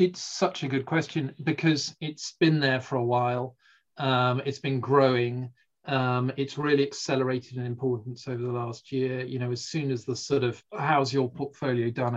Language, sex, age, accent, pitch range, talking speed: English, male, 40-59, British, 125-150 Hz, 185 wpm